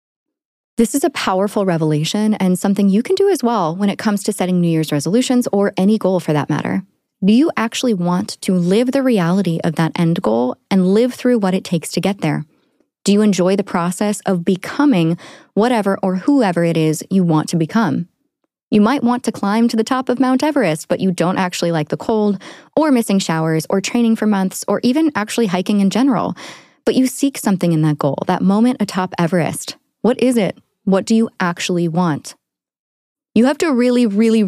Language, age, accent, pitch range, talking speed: English, 20-39, American, 170-230 Hz, 205 wpm